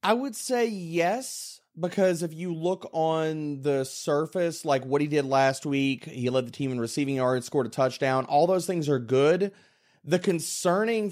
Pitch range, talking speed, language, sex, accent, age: 140-185 Hz, 185 wpm, English, male, American, 30-49